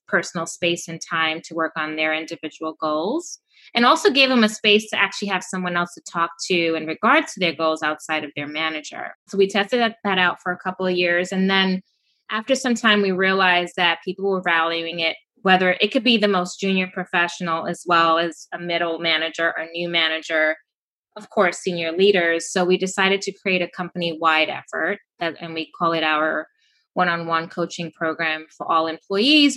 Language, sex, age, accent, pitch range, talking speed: English, female, 20-39, American, 165-195 Hz, 195 wpm